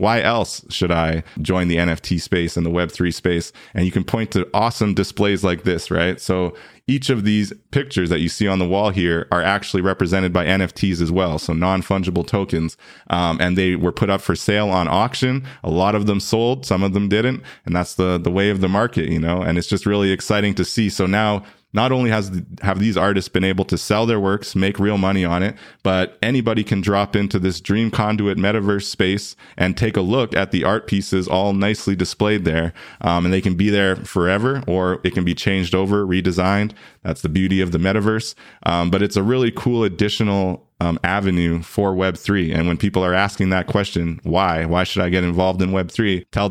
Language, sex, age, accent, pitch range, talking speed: English, male, 20-39, American, 90-105 Hz, 225 wpm